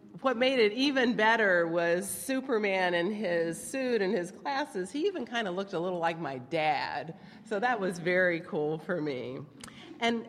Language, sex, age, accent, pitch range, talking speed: English, female, 50-69, American, 185-245 Hz, 180 wpm